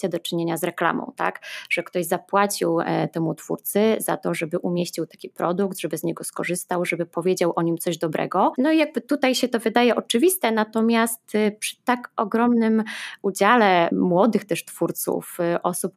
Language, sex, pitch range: Polish, female, 175-205 Hz